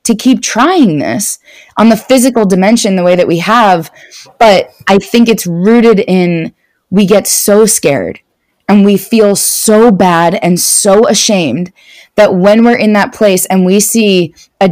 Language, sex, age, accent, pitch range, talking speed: English, female, 20-39, American, 165-195 Hz, 165 wpm